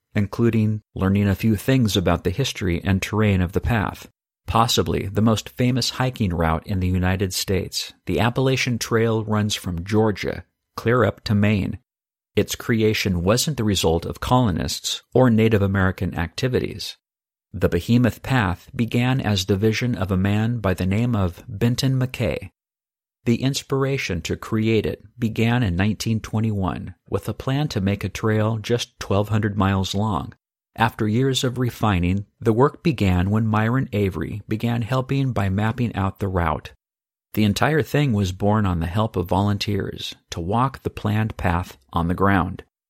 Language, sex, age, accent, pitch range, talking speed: English, male, 50-69, American, 95-120 Hz, 160 wpm